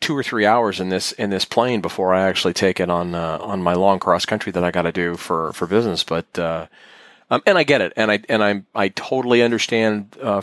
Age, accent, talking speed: 30-49, American, 255 wpm